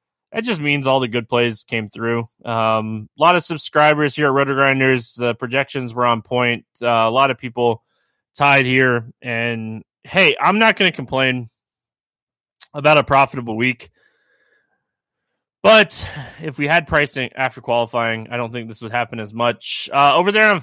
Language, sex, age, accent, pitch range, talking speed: English, male, 20-39, American, 120-155 Hz, 170 wpm